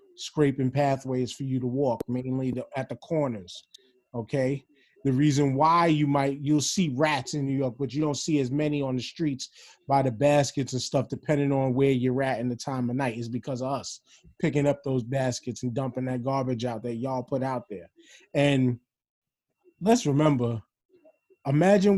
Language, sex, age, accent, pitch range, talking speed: English, male, 20-39, American, 125-150 Hz, 185 wpm